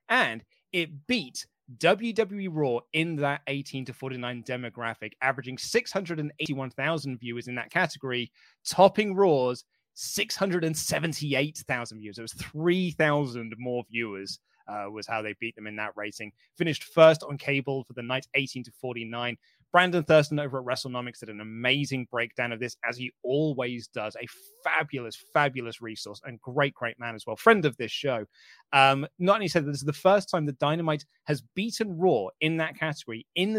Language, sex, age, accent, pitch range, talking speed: English, male, 20-39, British, 120-165 Hz, 165 wpm